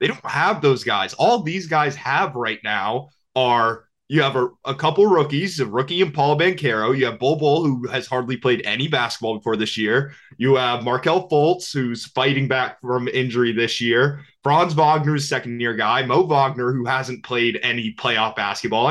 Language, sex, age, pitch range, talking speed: English, male, 20-39, 125-150 Hz, 195 wpm